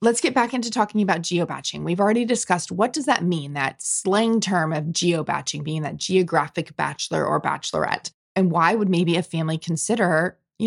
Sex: female